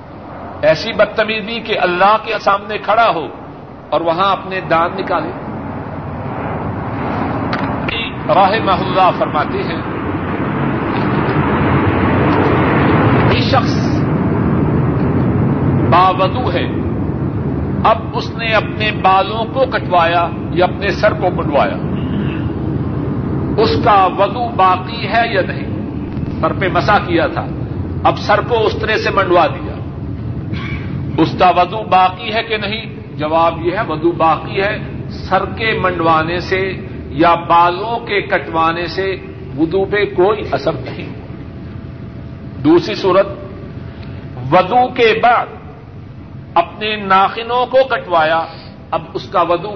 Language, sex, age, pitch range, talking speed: Urdu, male, 50-69, 160-205 Hz, 110 wpm